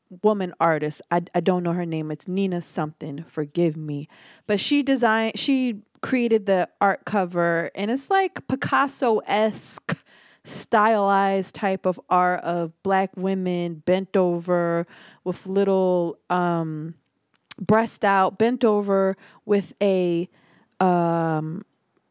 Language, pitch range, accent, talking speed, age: English, 175-260 Hz, American, 120 wpm, 20-39